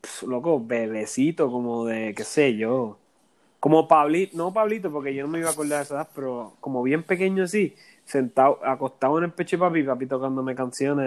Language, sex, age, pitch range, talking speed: Spanish, male, 20-39, 120-150 Hz, 190 wpm